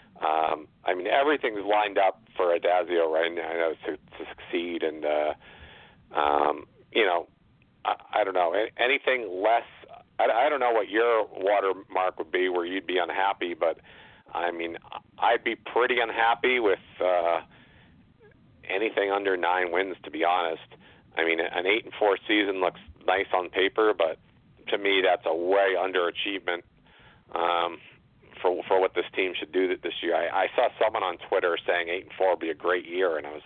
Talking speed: 180 wpm